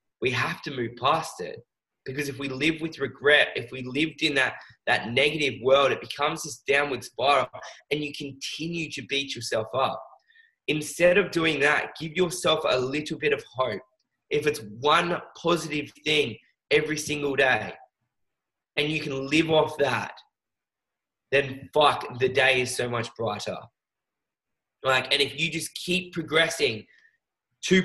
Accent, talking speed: Australian, 155 wpm